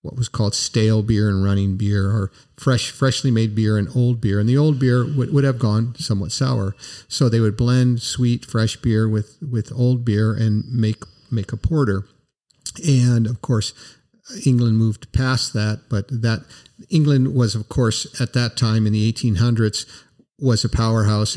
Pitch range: 110-125 Hz